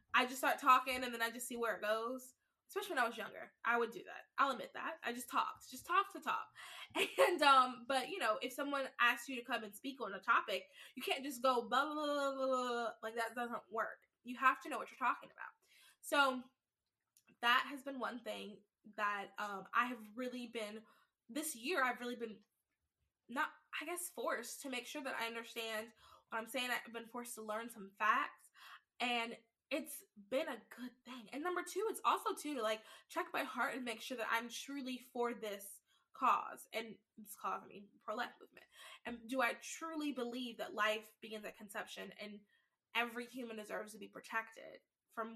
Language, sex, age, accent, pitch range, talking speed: English, female, 10-29, American, 220-265 Hz, 200 wpm